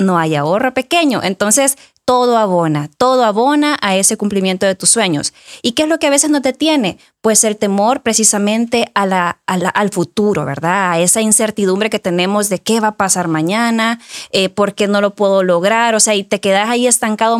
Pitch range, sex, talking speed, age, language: 185-240 Hz, female, 195 wpm, 20-39, Spanish